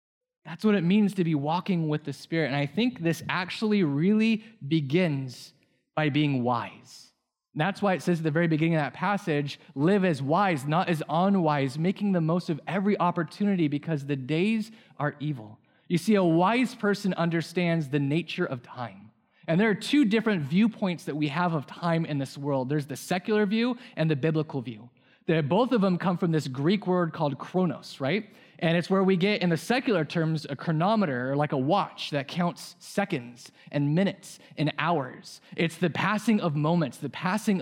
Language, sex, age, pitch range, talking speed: English, male, 20-39, 145-190 Hz, 190 wpm